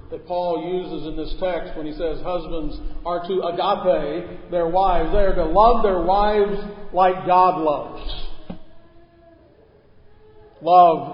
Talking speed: 135 wpm